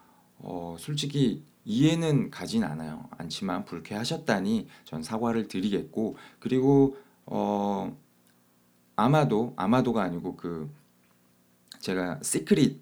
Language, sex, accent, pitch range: Korean, male, native, 85-140 Hz